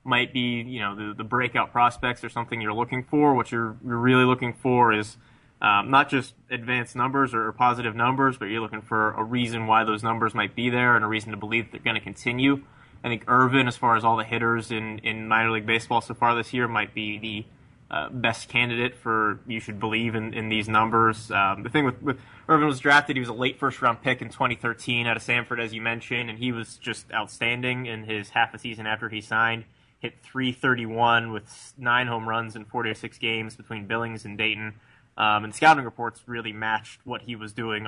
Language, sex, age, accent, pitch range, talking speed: English, male, 20-39, American, 110-125 Hz, 225 wpm